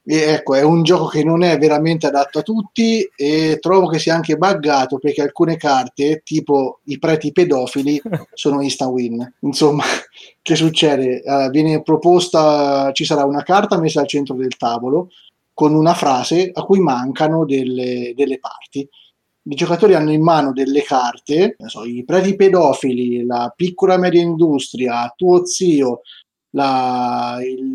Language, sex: Italian, male